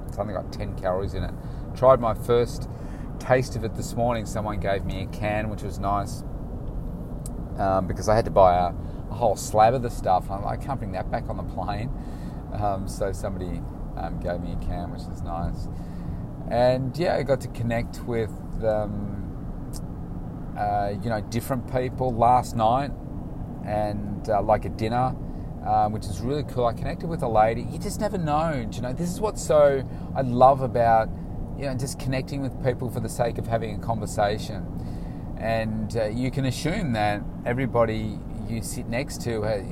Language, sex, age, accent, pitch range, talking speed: English, male, 30-49, Australian, 95-125 Hz, 190 wpm